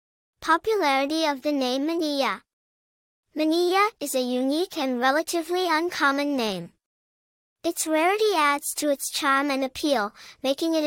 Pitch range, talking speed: 270-330 Hz, 125 wpm